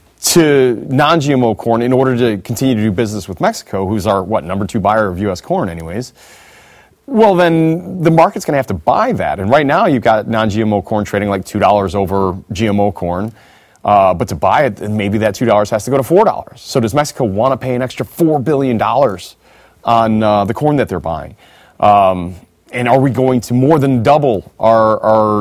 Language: English